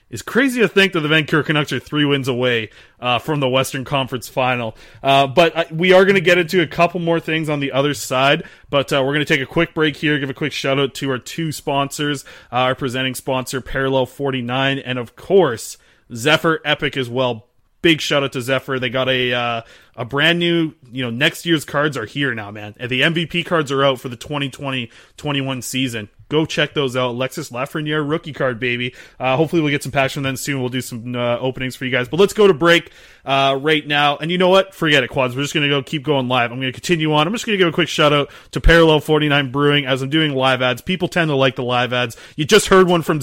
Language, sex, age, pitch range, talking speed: English, male, 20-39, 130-160 Hz, 245 wpm